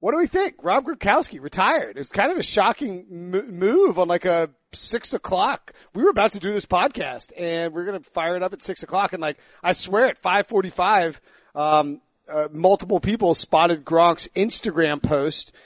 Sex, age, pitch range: male, 40-59, 165-195 Hz